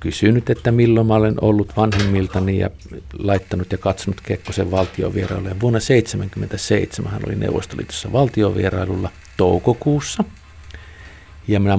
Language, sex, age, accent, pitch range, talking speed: Finnish, male, 50-69, native, 90-105 Hz, 110 wpm